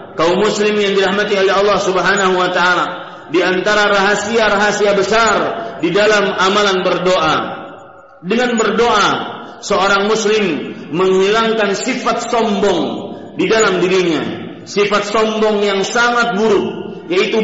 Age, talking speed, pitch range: 50-69, 115 wpm, 195-220 Hz